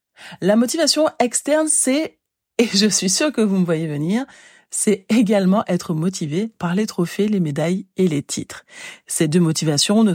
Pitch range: 165-225 Hz